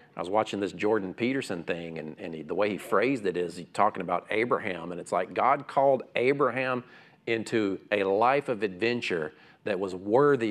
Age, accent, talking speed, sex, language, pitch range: 40-59, American, 195 wpm, male, English, 105-155 Hz